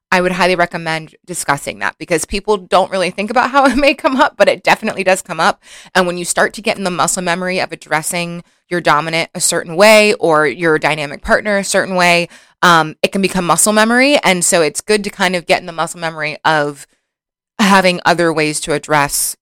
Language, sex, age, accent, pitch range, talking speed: English, female, 20-39, American, 155-190 Hz, 220 wpm